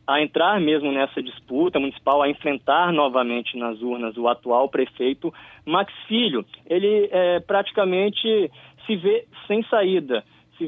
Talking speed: 135 wpm